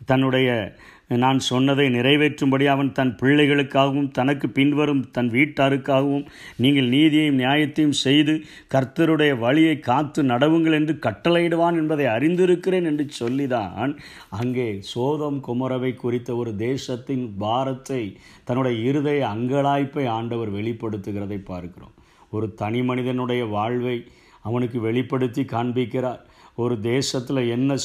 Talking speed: 100 wpm